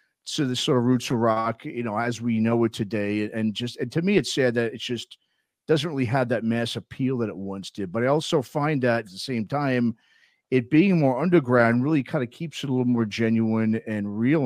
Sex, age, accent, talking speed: male, 40-59, American, 240 wpm